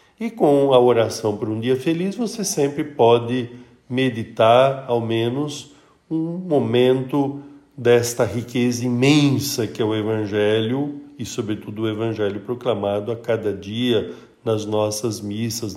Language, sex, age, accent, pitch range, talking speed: Portuguese, male, 50-69, Brazilian, 100-135 Hz, 130 wpm